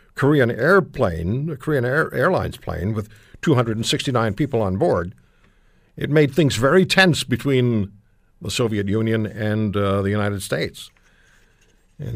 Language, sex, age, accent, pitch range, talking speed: English, male, 60-79, American, 105-140 Hz, 135 wpm